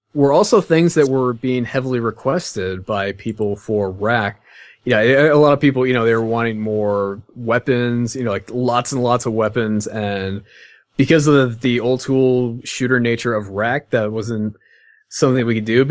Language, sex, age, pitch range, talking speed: English, male, 20-39, 110-145 Hz, 190 wpm